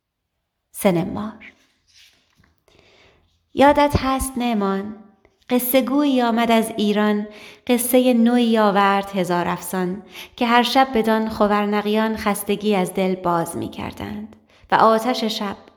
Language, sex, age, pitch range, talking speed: Persian, female, 30-49, 195-235 Hz, 105 wpm